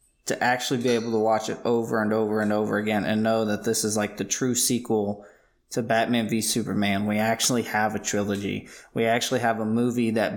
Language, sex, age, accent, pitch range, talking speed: English, male, 20-39, American, 110-130 Hz, 215 wpm